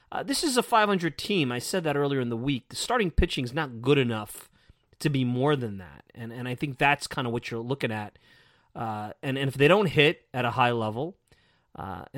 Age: 30-49